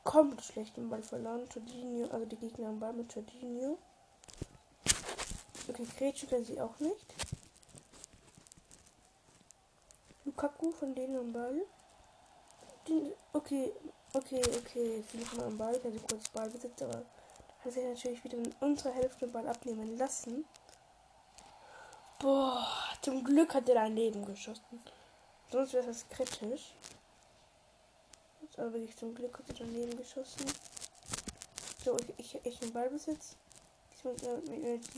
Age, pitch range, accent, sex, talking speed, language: 10-29, 235-280 Hz, German, female, 135 wpm, German